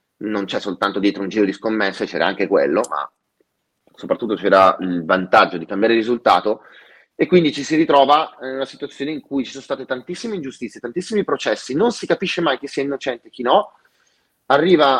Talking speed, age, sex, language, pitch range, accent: 190 wpm, 30-49, male, Italian, 110-150 Hz, native